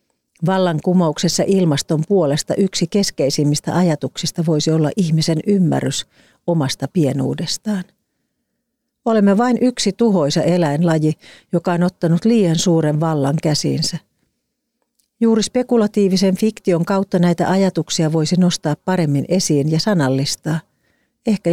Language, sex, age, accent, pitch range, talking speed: Finnish, female, 40-59, native, 150-185 Hz, 105 wpm